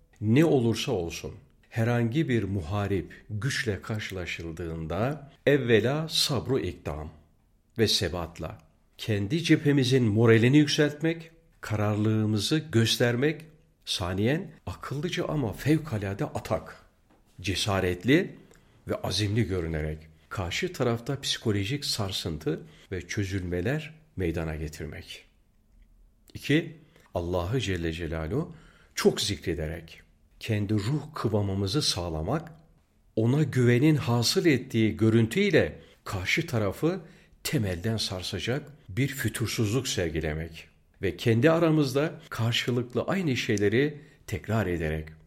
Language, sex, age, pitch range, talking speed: Turkish, male, 50-69, 95-145 Hz, 85 wpm